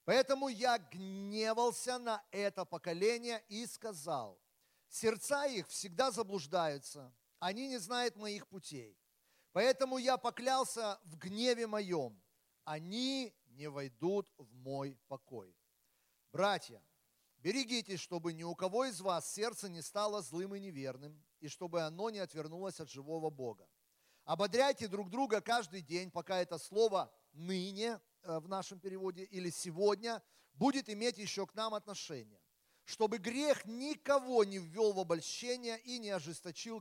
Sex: male